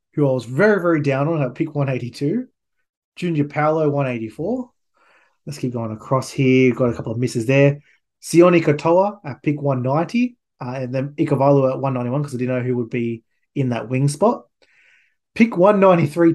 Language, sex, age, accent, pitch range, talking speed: English, male, 20-39, Australian, 125-150 Hz, 175 wpm